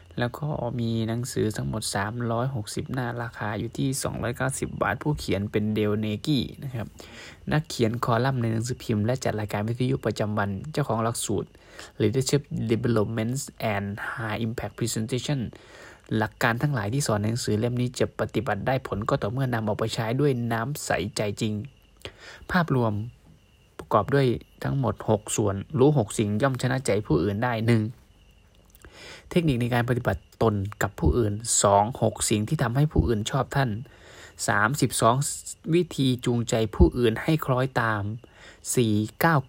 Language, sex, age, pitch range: Thai, male, 20-39, 105-130 Hz